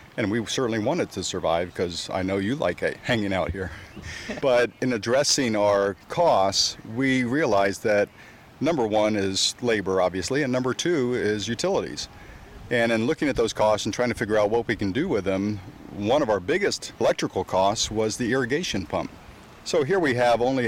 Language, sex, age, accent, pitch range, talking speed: English, male, 50-69, American, 100-115 Hz, 185 wpm